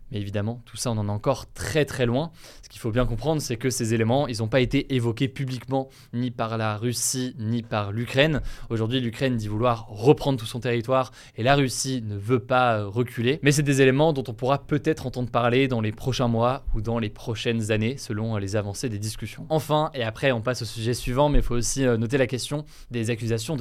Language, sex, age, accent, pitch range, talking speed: French, male, 20-39, French, 115-135 Hz, 225 wpm